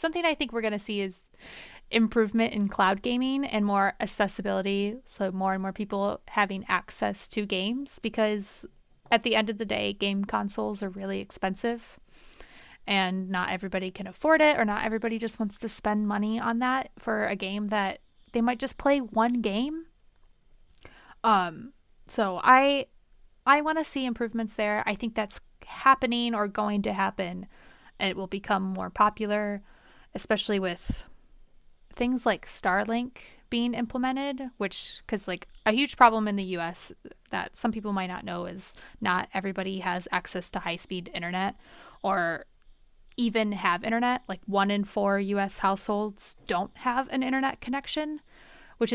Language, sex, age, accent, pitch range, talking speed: English, female, 30-49, American, 195-235 Hz, 165 wpm